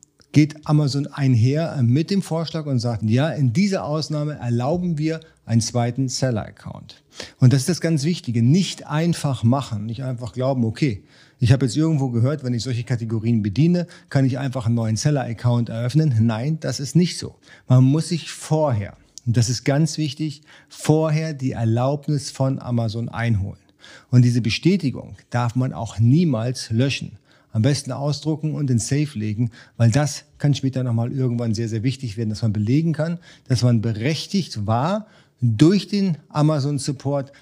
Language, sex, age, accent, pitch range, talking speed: German, male, 40-59, German, 120-155 Hz, 165 wpm